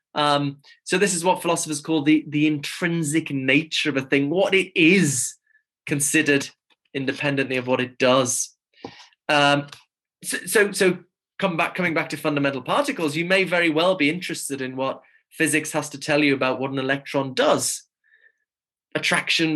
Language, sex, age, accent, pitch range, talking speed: English, male, 20-39, British, 140-190 Hz, 155 wpm